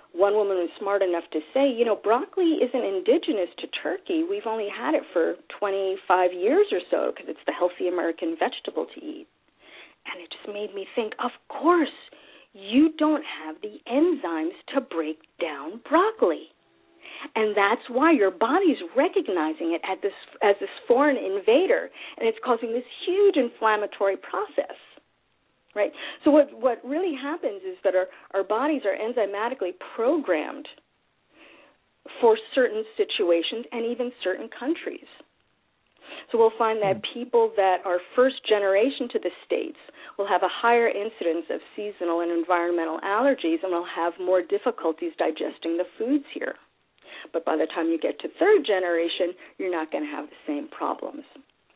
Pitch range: 185-315 Hz